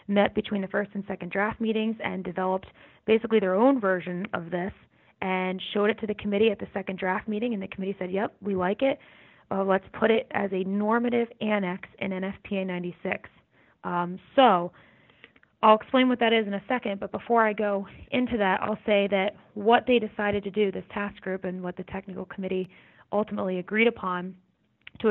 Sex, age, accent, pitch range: female, 20-39, American, 190-215 Hz